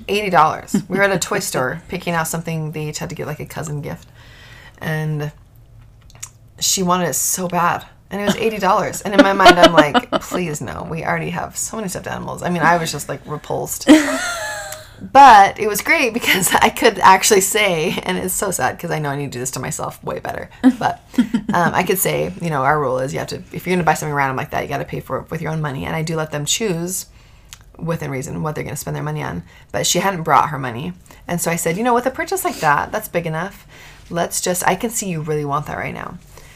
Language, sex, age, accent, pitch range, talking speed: English, female, 30-49, American, 150-200 Hz, 255 wpm